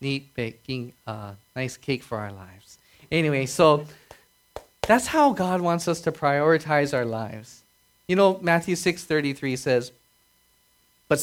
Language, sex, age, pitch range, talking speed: English, male, 30-49, 120-170 Hz, 135 wpm